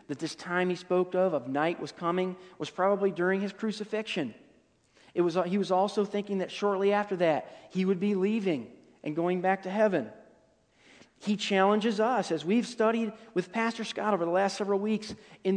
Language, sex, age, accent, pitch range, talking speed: English, male, 40-59, American, 155-210 Hz, 190 wpm